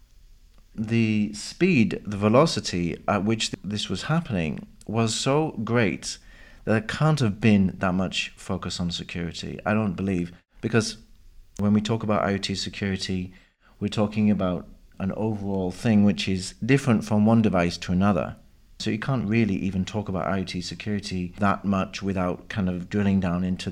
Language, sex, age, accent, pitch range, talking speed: English, male, 40-59, British, 95-115 Hz, 160 wpm